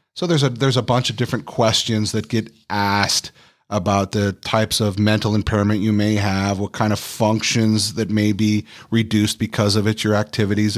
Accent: American